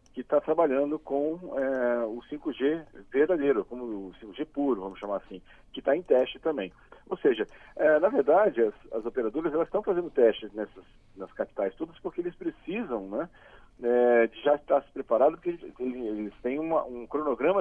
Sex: male